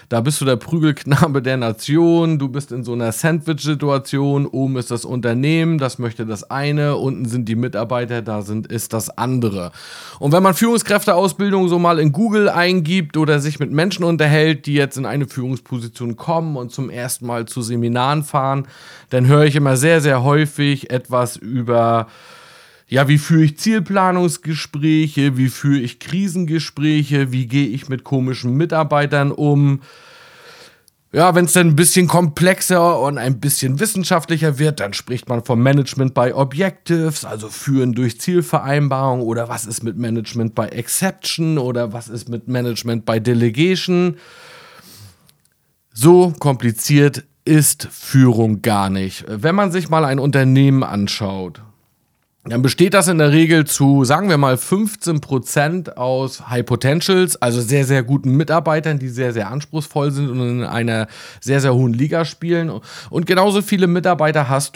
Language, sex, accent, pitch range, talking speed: German, male, German, 125-160 Hz, 155 wpm